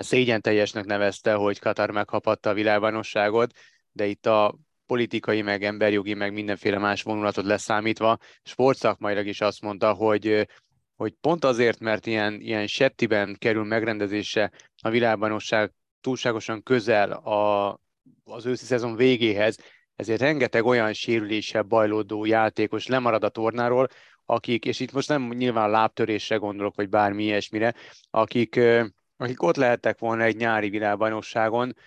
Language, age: Hungarian, 30-49